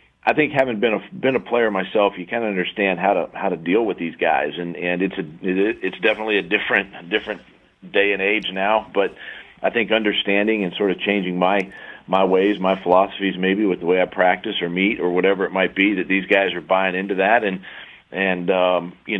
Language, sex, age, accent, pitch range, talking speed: English, male, 40-59, American, 90-100 Hz, 220 wpm